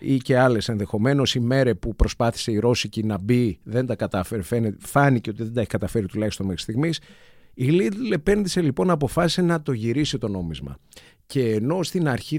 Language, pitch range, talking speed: Greek, 110-140 Hz, 210 wpm